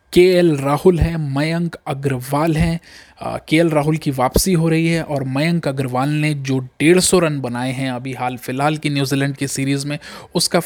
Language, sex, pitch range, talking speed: Hindi, male, 135-165 Hz, 180 wpm